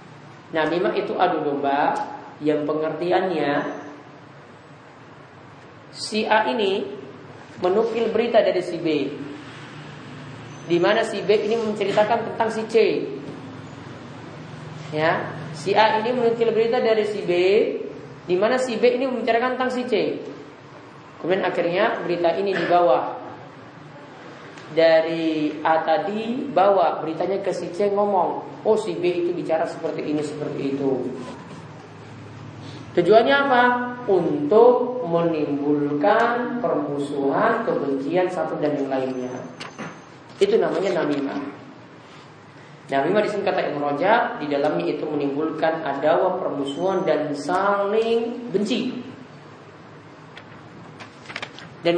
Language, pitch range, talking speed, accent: English, 145-215 Hz, 105 wpm, Indonesian